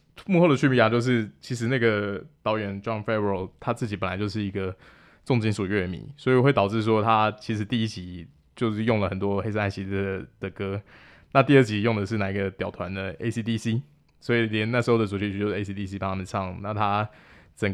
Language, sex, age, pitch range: Chinese, male, 20-39, 100-120 Hz